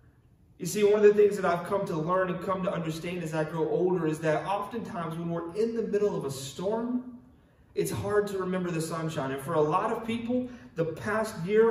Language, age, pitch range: English, 30-49, 170-220 Hz